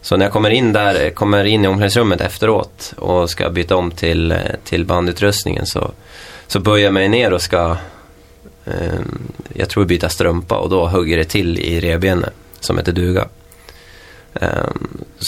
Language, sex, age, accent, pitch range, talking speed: Swedish, male, 20-39, native, 85-100 Hz, 165 wpm